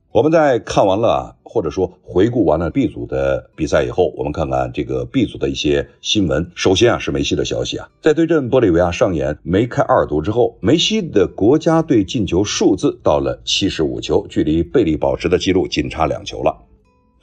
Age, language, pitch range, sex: 50-69, Chinese, 75-115 Hz, male